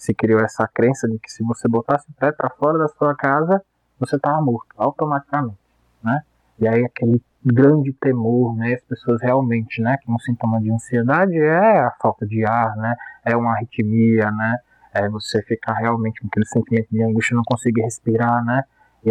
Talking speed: 190 wpm